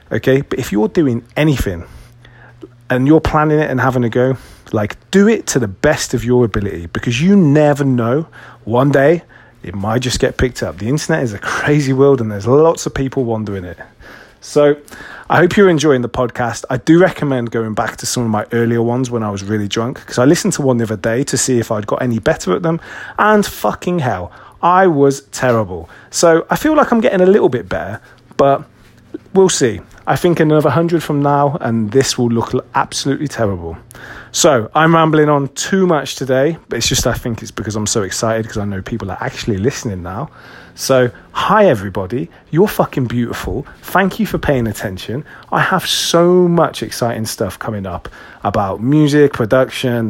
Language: English